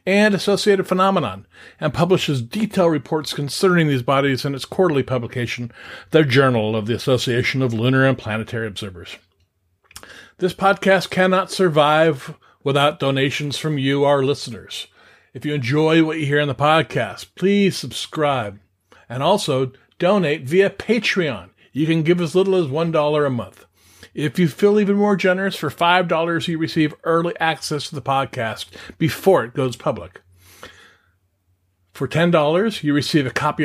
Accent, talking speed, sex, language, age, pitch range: American, 150 wpm, male, English, 50-69, 130-180 Hz